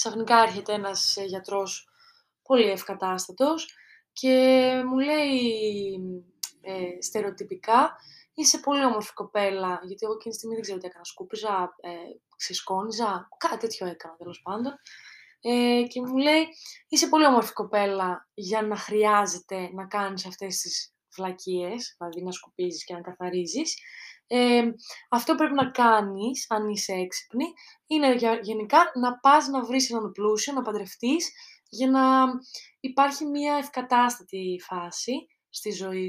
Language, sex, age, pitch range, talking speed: Greek, female, 20-39, 190-265 Hz, 130 wpm